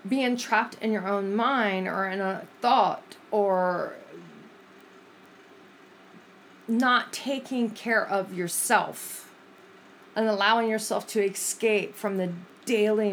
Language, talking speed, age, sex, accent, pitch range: English, 110 wpm, 40-59, female, American, 185-225 Hz